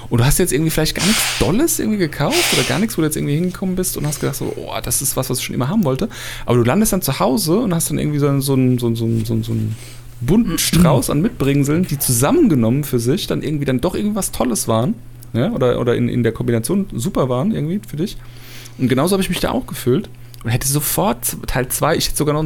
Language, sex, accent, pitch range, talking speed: German, male, German, 115-150 Hz, 260 wpm